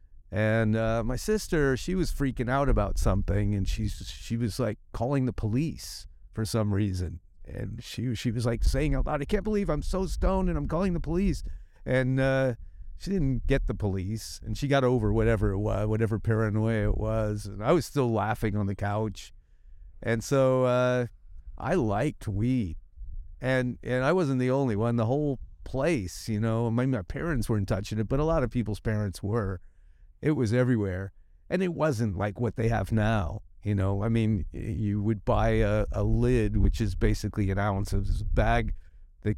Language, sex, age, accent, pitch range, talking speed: English, male, 50-69, American, 95-125 Hz, 190 wpm